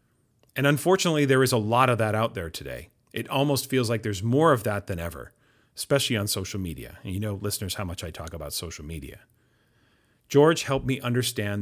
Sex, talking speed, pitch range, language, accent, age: male, 205 wpm, 100-125 Hz, English, American, 40-59